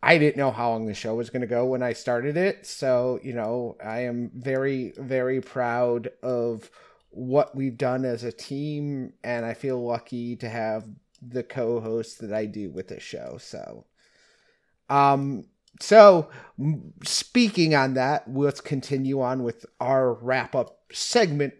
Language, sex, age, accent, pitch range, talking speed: English, male, 30-49, American, 125-155 Hz, 160 wpm